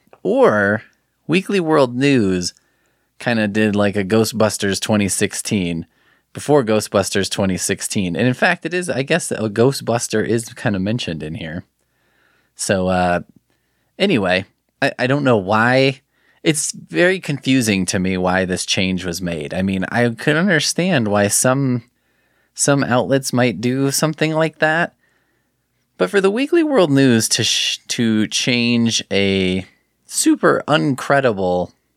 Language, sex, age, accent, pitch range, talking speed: English, male, 20-39, American, 100-140 Hz, 140 wpm